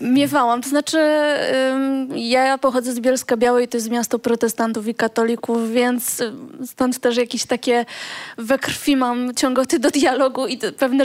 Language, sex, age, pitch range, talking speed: Polish, female, 20-39, 250-285 Hz, 145 wpm